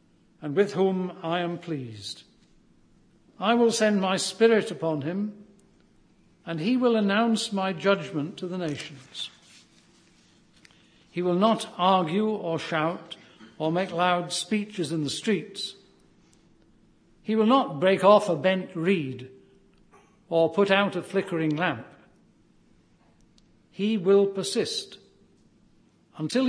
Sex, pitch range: male, 150-200 Hz